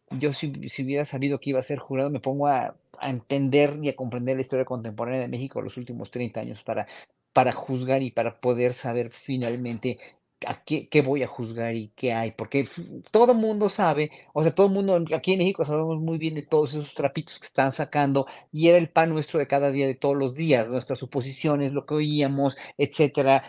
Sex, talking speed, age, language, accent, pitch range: male, 215 wpm, 40-59, Spanish, Mexican, 135-165 Hz